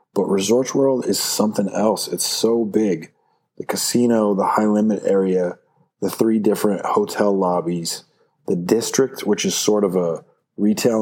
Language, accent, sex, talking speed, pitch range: English, American, male, 150 wpm, 90-105 Hz